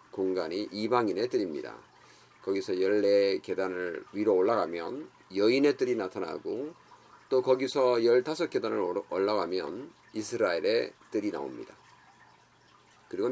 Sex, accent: male, native